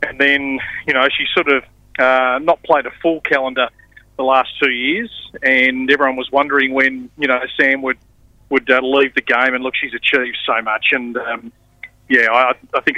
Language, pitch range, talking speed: English, 130-145 Hz, 200 wpm